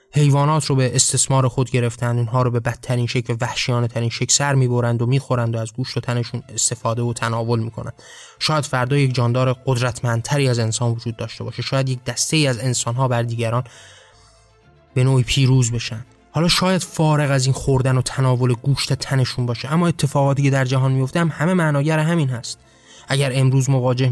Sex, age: male, 20-39